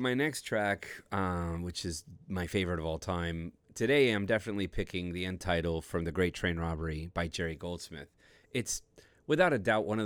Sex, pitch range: male, 85-110 Hz